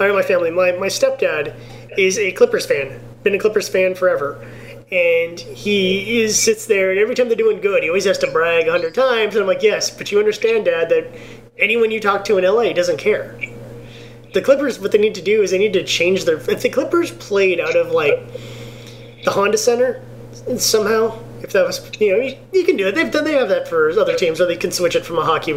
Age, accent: 30-49, American